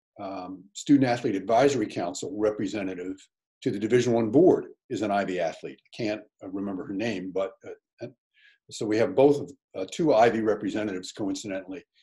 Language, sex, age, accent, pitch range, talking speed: English, male, 50-69, American, 105-145 Hz, 145 wpm